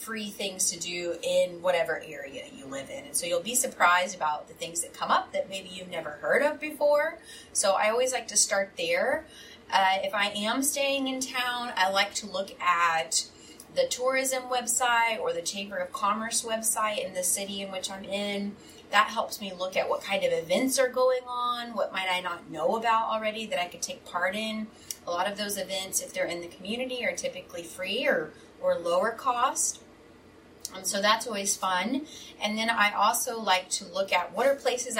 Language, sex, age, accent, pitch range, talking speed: English, female, 30-49, American, 185-250 Hz, 205 wpm